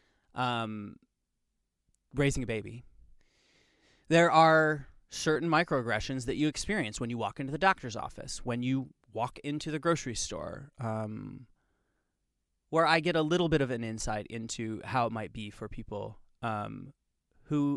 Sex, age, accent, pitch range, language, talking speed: male, 20-39, American, 115-145 Hz, English, 150 wpm